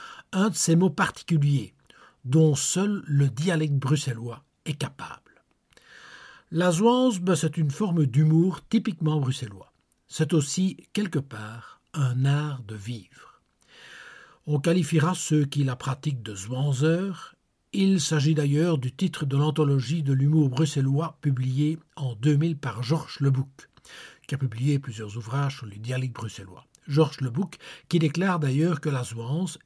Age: 60-79